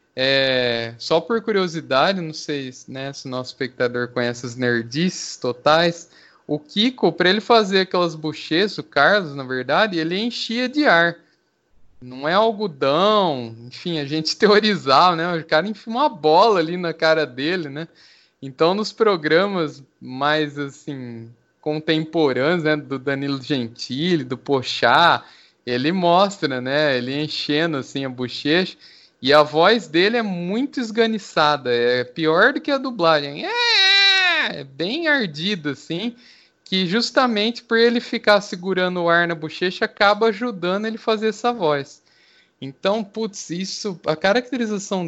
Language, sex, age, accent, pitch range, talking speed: Portuguese, male, 20-39, Brazilian, 145-210 Hz, 145 wpm